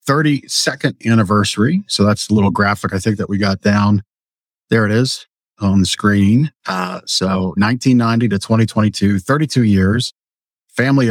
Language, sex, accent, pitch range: English, male, American, 105-125 Hz